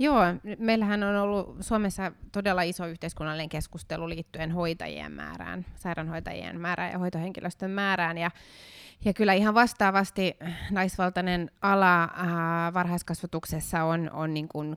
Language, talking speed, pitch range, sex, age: Finnish, 120 wpm, 155-175 Hz, female, 20-39